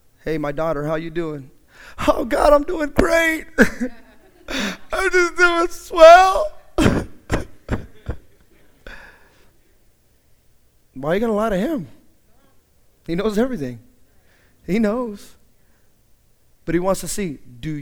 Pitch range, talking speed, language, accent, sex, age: 175-260 Hz, 115 wpm, English, American, male, 30-49